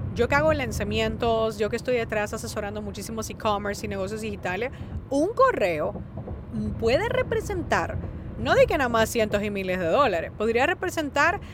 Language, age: Spanish, 30-49